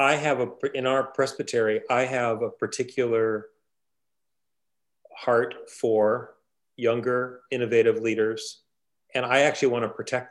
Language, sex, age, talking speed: English, male, 40-59, 115 wpm